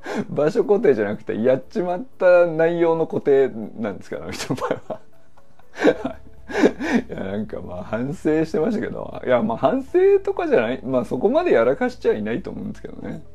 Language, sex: Japanese, male